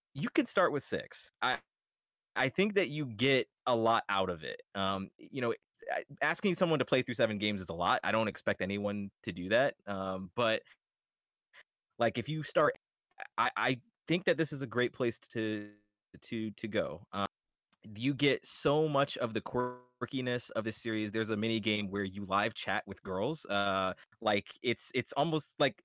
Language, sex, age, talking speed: English, male, 20-39, 190 wpm